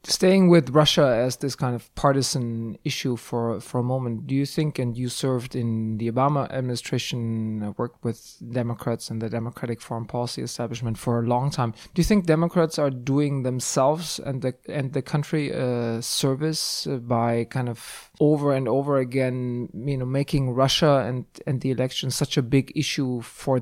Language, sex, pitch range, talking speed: English, male, 120-145 Hz, 180 wpm